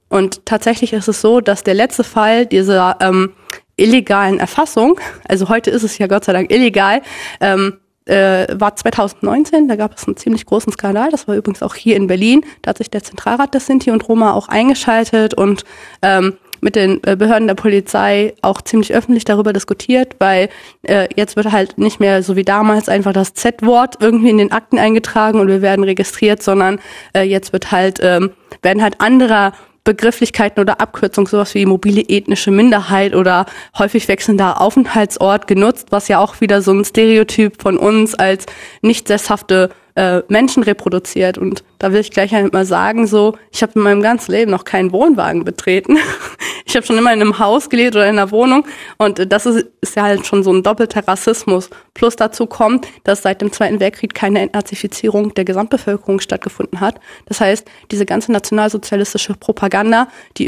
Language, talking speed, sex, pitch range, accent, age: German, 180 wpm, female, 195-225 Hz, German, 20-39